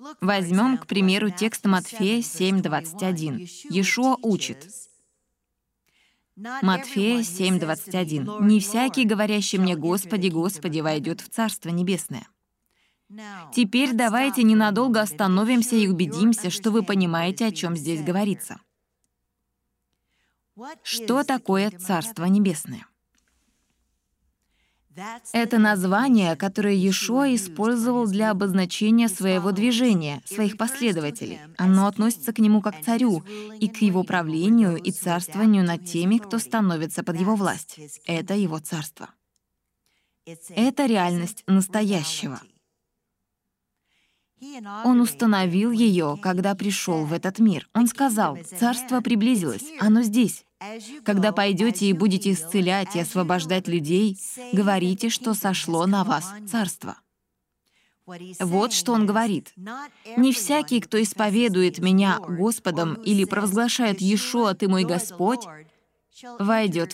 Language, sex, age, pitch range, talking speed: Russian, female, 20-39, 180-225 Hz, 105 wpm